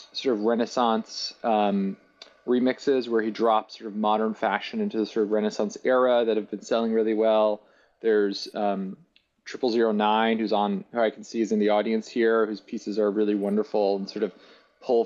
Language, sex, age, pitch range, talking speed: English, male, 20-39, 110-130 Hz, 195 wpm